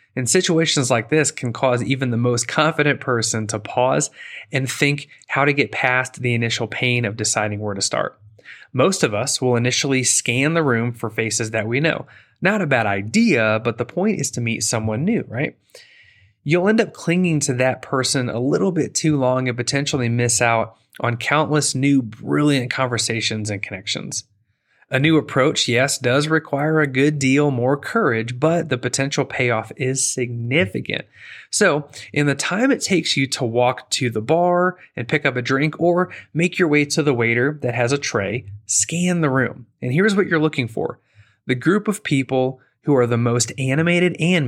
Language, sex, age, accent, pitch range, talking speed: English, male, 30-49, American, 115-155 Hz, 190 wpm